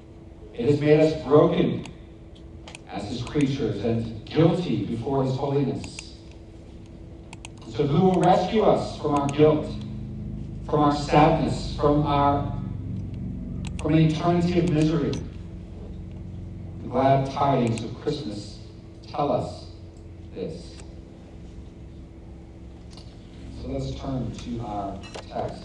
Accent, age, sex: American, 50-69, male